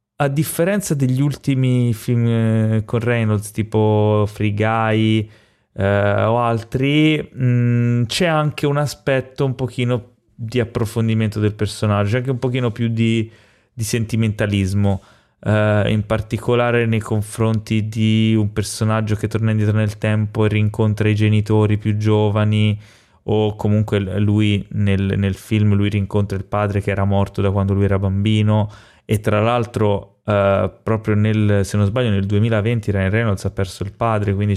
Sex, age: male, 20-39